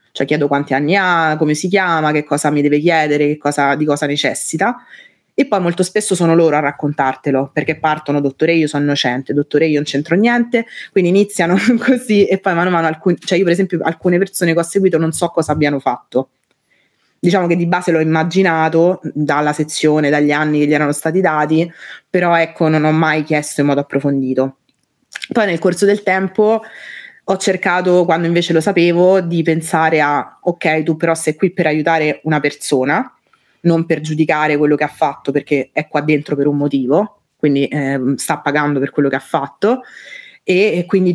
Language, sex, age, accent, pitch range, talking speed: Italian, female, 20-39, native, 150-175 Hz, 190 wpm